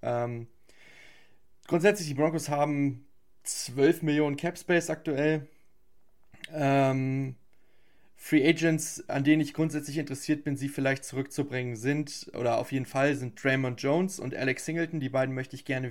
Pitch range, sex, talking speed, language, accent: 130-150 Hz, male, 135 wpm, German, German